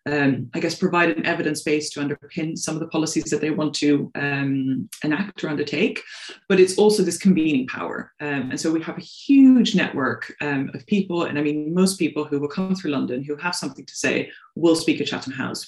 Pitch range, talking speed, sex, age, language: 150-200 Hz, 220 wpm, female, 20-39, English